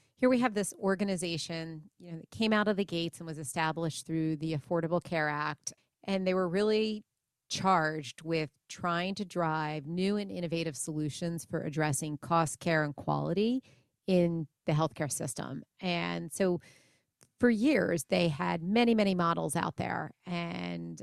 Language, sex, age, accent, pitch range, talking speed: English, female, 30-49, American, 160-190 Hz, 160 wpm